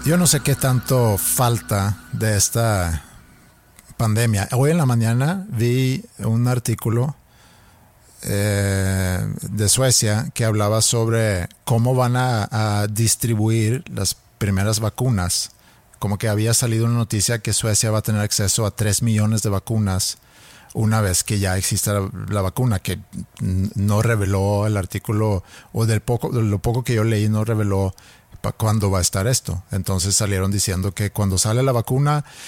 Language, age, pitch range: Spanish, 50-69, 100-120 Hz